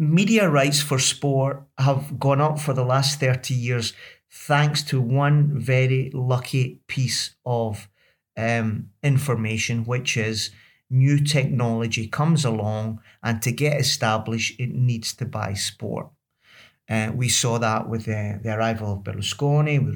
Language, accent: English, British